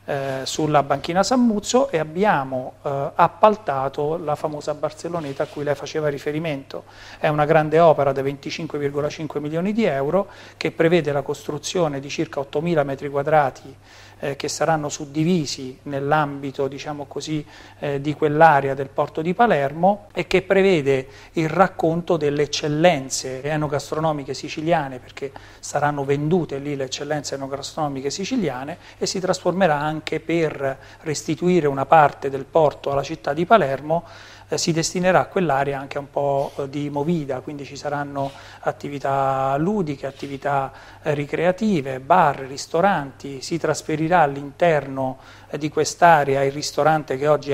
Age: 40-59